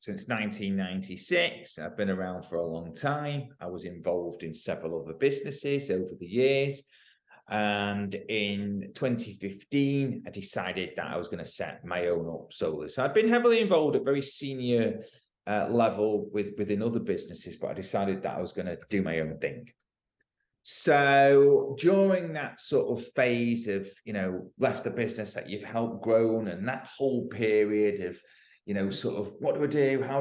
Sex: male